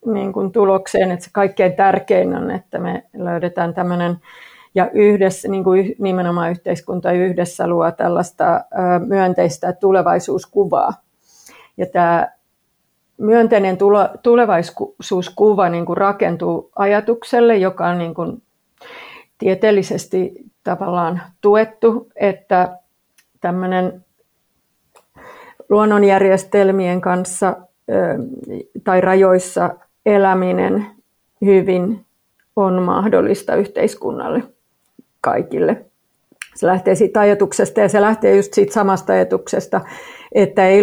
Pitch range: 180-215 Hz